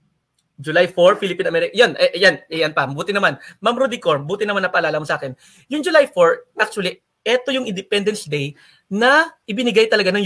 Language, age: Filipino, 30-49